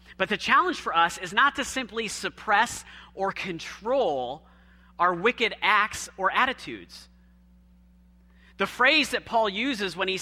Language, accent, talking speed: English, American, 140 wpm